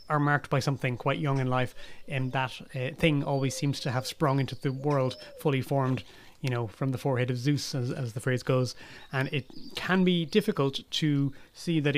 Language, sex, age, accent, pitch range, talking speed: English, male, 30-49, Irish, 130-155 Hz, 210 wpm